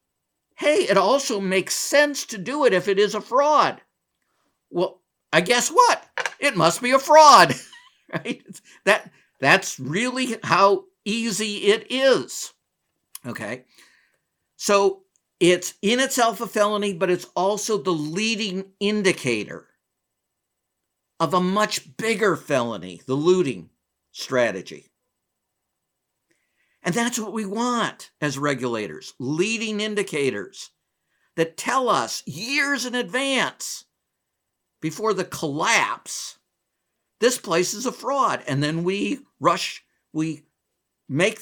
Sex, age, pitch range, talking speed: male, 50-69, 175-230 Hz, 115 wpm